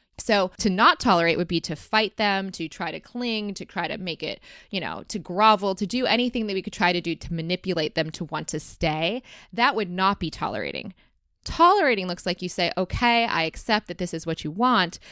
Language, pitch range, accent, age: English, 170-210 Hz, American, 20-39